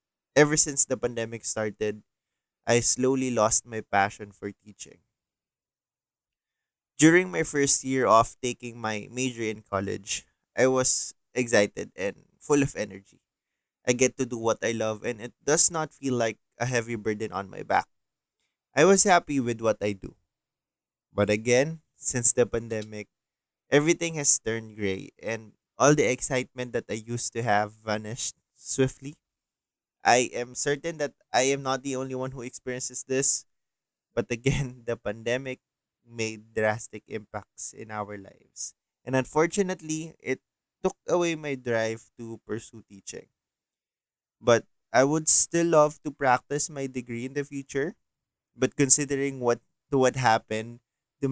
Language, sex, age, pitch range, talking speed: English, male, 20-39, 110-140 Hz, 145 wpm